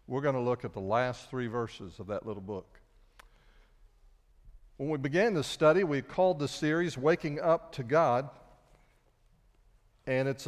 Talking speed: 160 wpm